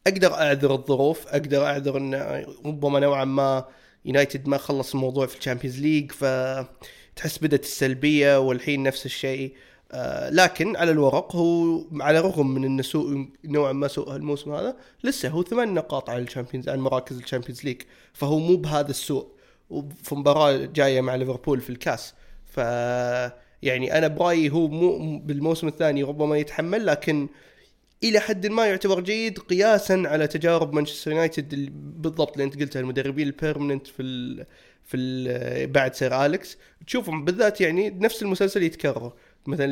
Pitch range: 135-165 Hz